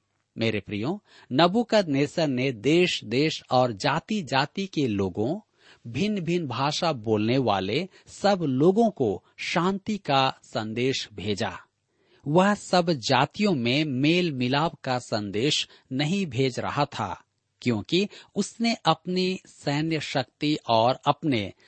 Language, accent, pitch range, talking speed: Hindi, native, 120-180 Hz, 115 wpm